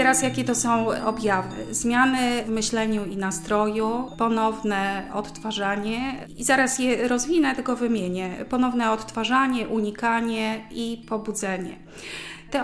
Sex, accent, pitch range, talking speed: female, native, 200-230 Hz, 115 wpm